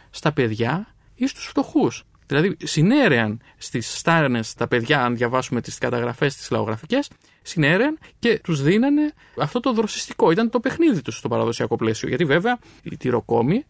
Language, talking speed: Greek, 155 wpm